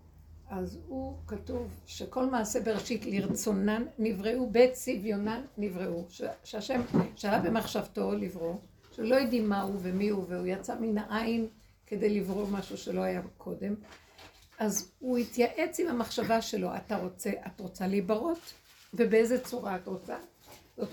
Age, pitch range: 60-79, 185-240 Hz